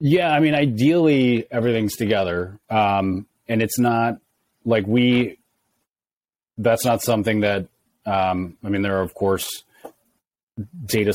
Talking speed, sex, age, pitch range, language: 140 wpm, male, 30-49, 95-110 Hz, English